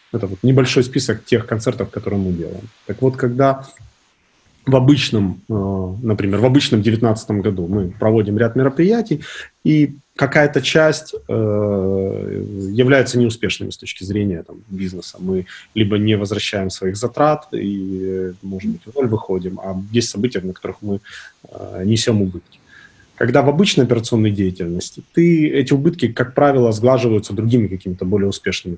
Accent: native